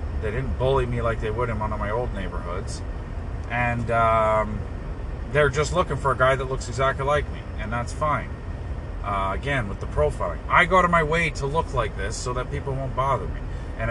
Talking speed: 215 wpm